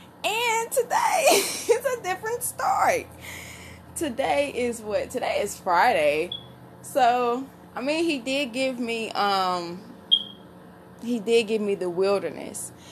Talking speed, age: 120 wpm, 20-39